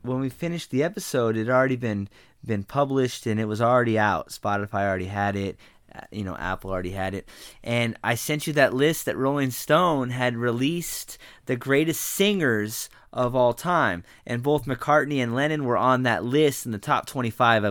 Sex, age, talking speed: male, 20-39, 190 wpm